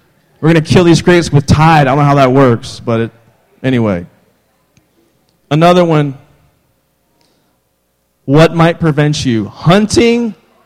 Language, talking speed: English, 130 wpm